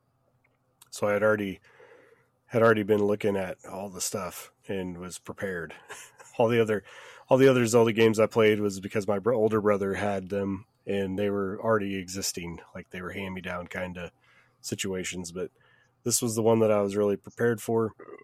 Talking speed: 190 wpm